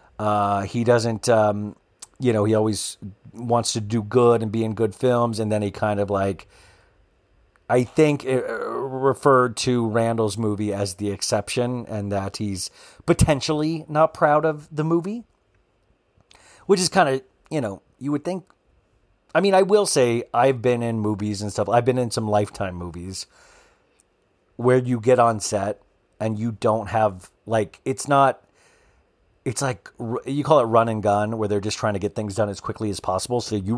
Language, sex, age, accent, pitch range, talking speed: English, male, 40-59, American, 105-130 Hz, 180 wpm